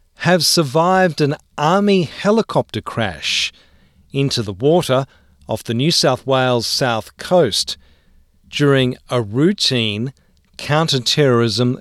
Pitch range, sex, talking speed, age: 100-150 Hz, male, 100 wpm, 40-59